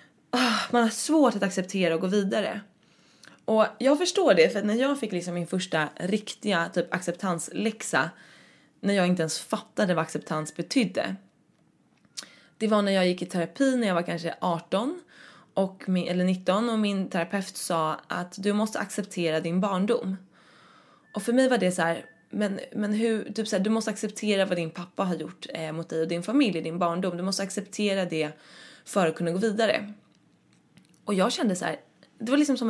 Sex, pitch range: female, 175-220 Hz